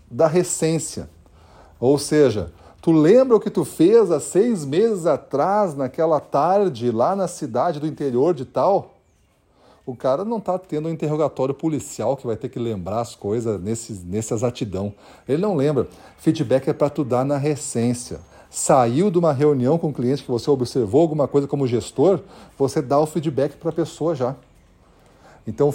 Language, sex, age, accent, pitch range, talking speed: Portuguese, male, 40-59, Brazilian, 115-155 Hz, 170 wpm